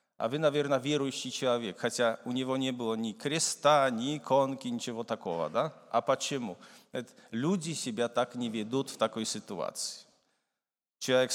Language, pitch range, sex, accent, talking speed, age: Russian, 120-150 Hz, male, Polish, 150 wpm, 40-59